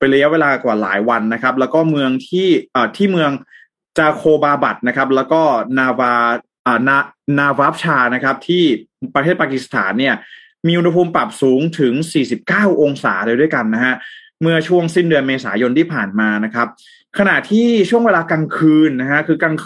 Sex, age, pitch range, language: male, 20-39, 130-170 Hz, Thai